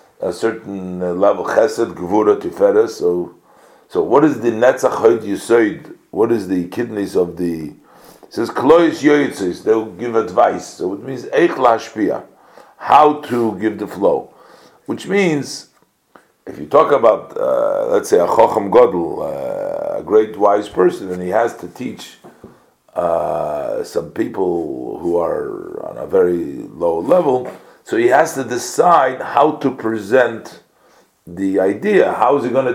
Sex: male